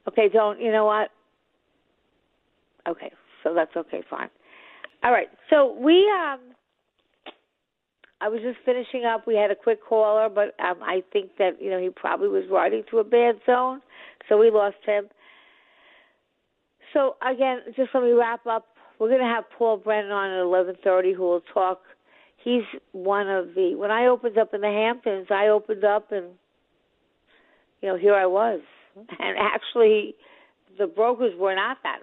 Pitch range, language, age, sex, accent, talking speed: 190-250 Hz, English, 50-69, female, American, 170 wpm